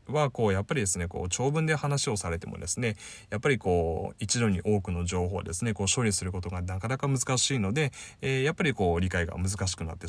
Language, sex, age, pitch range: Japanese, male, 20-39, 95-135 Hz